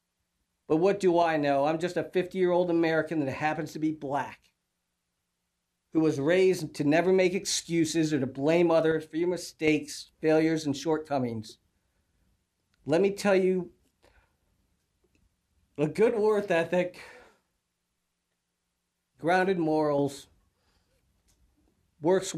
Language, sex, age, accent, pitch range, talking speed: English, male, 50-69, American, 140-180 Hz, 115 wpm